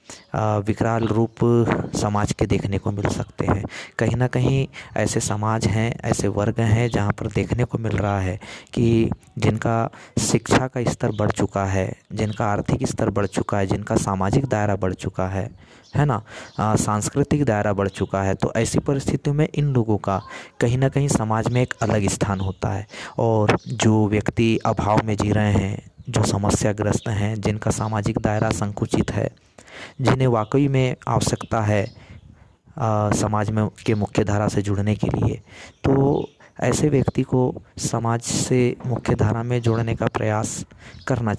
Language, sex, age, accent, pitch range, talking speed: Hindi, male, 20-39, native, 105-120 Hz, 165 wpm